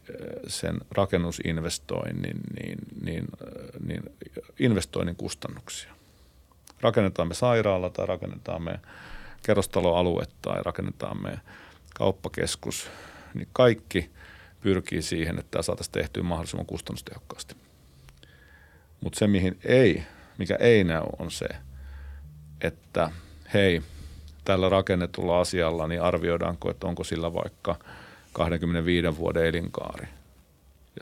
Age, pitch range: 40-59, 80-95 Hz